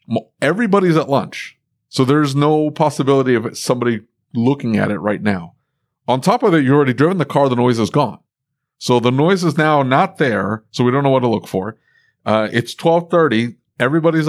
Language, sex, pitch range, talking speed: English, male, 110-145 Hz, 195 wpm